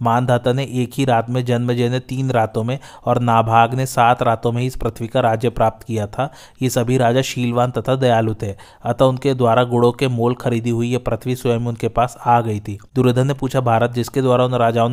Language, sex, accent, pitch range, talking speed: Hindi, male, native, 115-130 Hz, 220 wpm